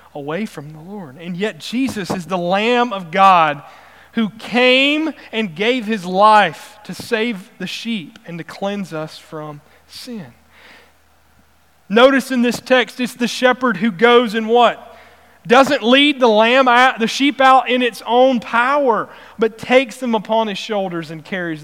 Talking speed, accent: 165 wpm, American